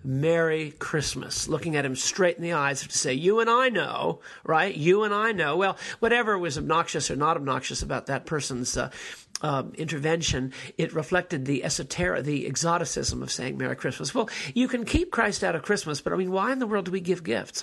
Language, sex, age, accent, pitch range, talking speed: English, male, 50-69, American, 140-180 Hz, 210 wpm